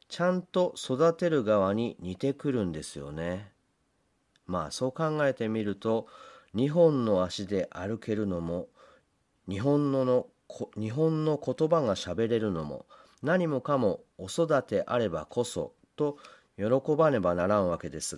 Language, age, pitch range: Japanese, 40-59, 100-155 Hz